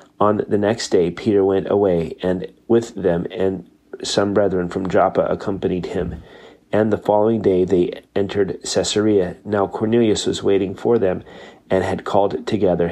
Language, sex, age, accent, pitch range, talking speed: English, male, 30-49, American, 95-105 Hz, 160 wpm